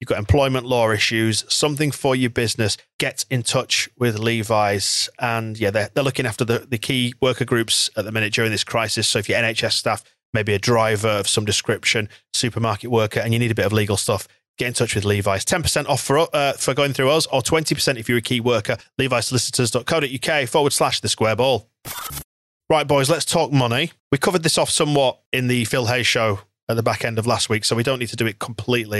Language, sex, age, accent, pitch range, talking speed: English, male, 30-49, British, 110-130 Hz, 225 wpm